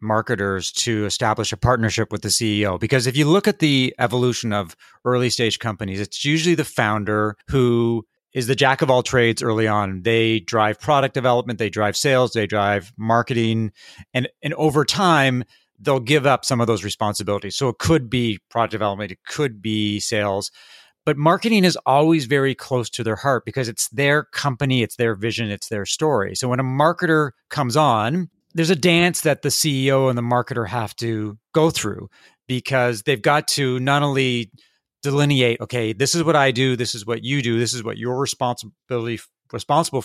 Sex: male